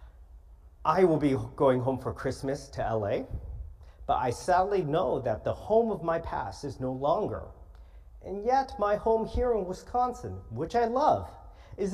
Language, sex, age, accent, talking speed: English, male, 40-59, American, 165 wpm